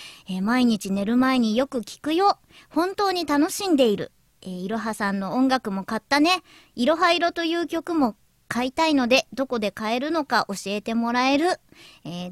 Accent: native